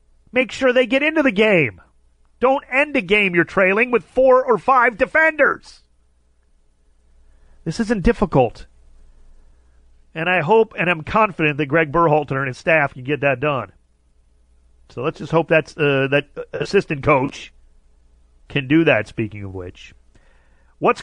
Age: 40-59